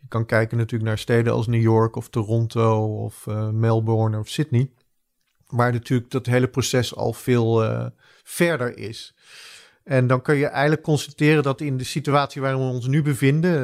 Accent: Dutch